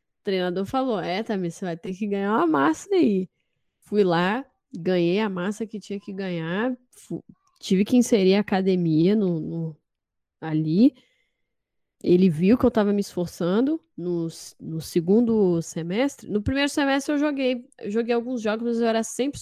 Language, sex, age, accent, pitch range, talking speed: Portuguese, female, 10-29, Brazilian, 175-225 Hz, 170 wpm